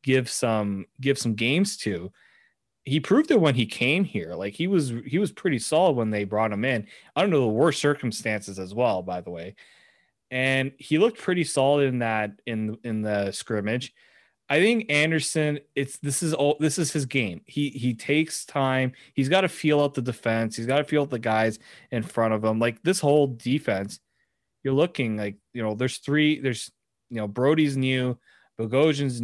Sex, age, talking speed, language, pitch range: male, 20-39, 195 wpm, English, 115-145 Hz